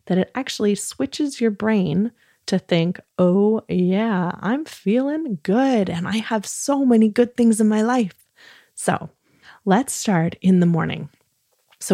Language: English